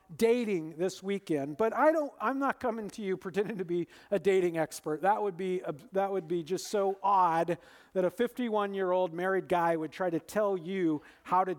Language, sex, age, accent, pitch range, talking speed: English, male, 50-69, American, 175-235 Hz, 210 wpm